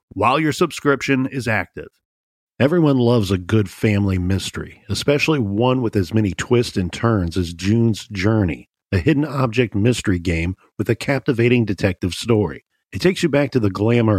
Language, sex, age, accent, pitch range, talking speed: English, male, 50-69, American, 100-130 Hz, 165 wpm